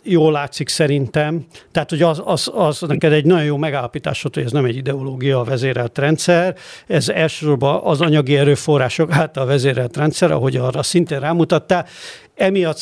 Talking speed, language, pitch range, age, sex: 155 wpm, Hungarian, 140-160 Hz, 60-79, male